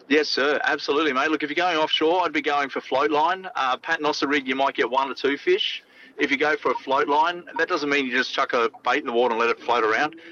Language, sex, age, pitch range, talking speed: English, male, 30-49, 135-175 Hz, 285 wpm